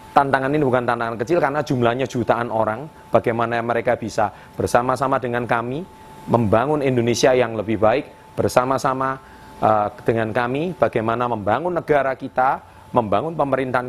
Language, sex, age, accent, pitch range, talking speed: Indonesian, male, 30-49, native, 110-135 Hz, 125 wpm